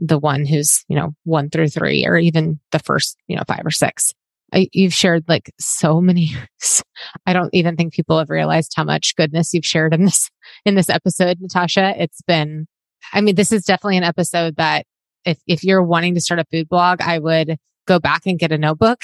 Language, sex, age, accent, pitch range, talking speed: English, female, 20-39, American, 160-185 Hz, 210 wpm